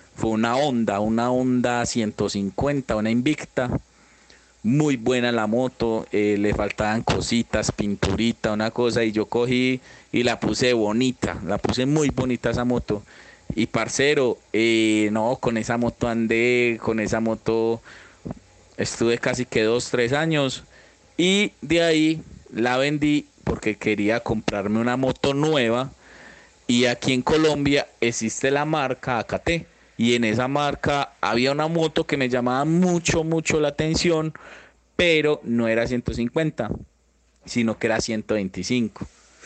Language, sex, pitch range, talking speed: Spanish, male, 110-140 Hz, 135 wpm